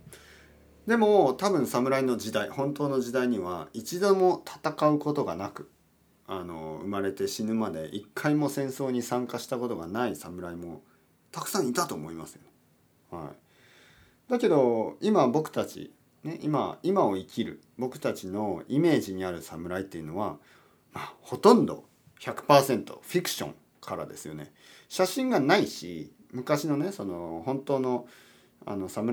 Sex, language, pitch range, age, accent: male, Japanese, 95-145 Hz, 40-59, native